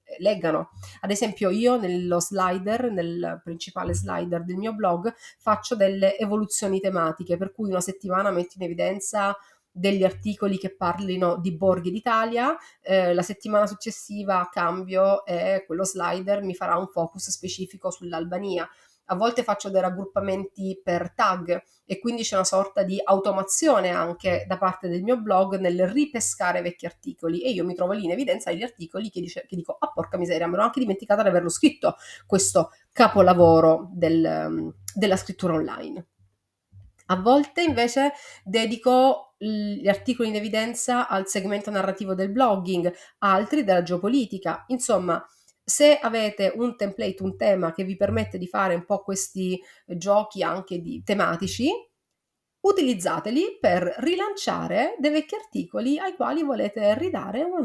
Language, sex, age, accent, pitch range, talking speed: Italian, female, 30-49, native, 175-225 Hz, 145 wpm